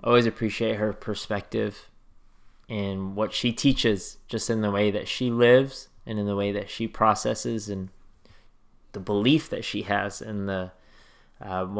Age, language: 20-39, English